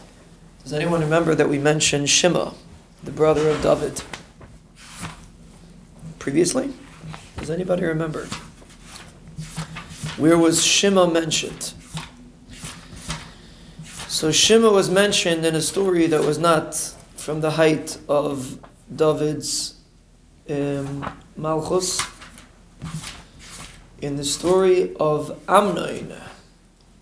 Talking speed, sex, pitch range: 90 wpm, male, 150-165 Hz